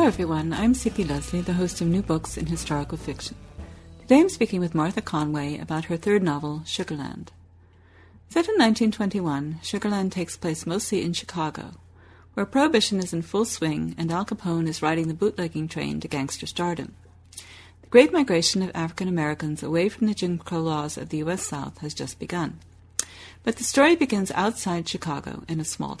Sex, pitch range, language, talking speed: female, 155-205 Hz, English, 180 wpm